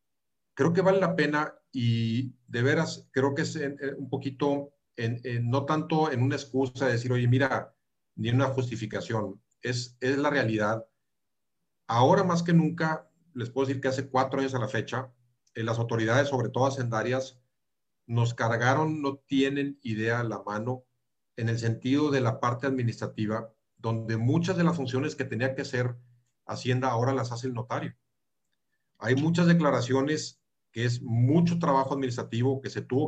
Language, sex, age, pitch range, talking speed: Spanish, male, 40-59, 115-135 Hz, 170 wpm